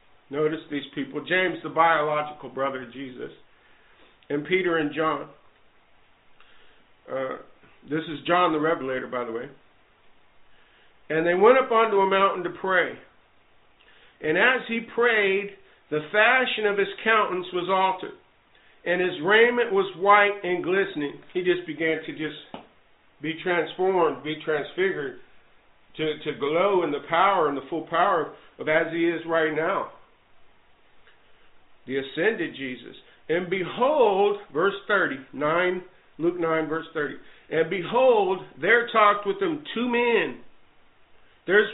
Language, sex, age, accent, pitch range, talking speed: English, male, 50-69, American, 160-230 Hz, 135 wpm